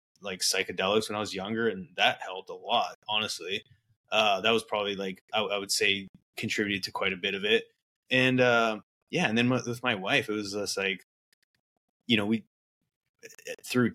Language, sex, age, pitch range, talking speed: English, male, 20-39, 100-115 Hz, 195 wpm